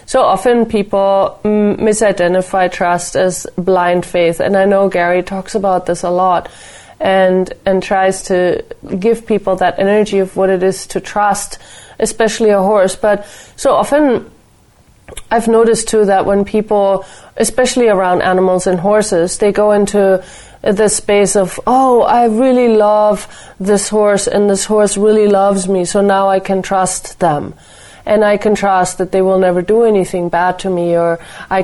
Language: English